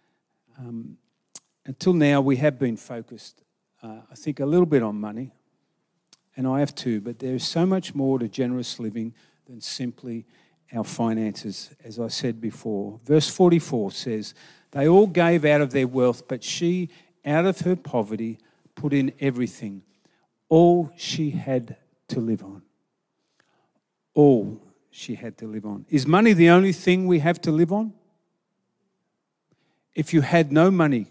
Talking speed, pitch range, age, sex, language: 160 wpm, 125-170 Hz, 50-69, male, English